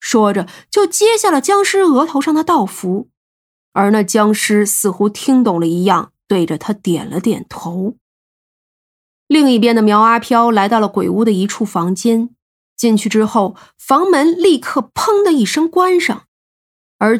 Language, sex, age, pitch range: Chinese, female, 20-39, 200-275 Hz